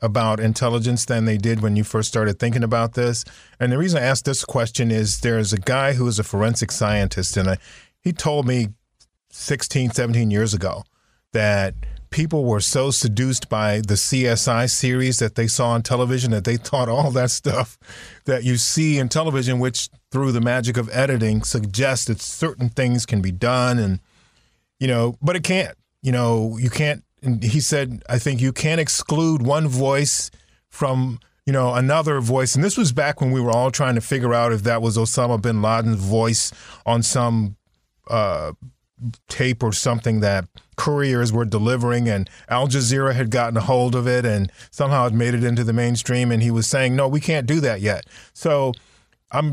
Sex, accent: male, American